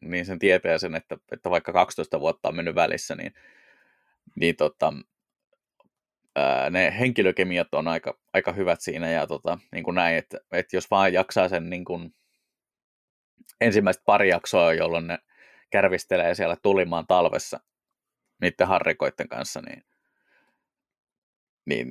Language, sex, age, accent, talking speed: Finnish, male, 20-39, native, 135 wpm